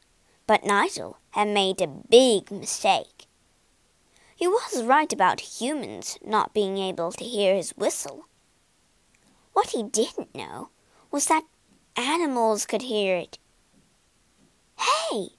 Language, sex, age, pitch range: Chinese, male, 20-39, 210-315 Hz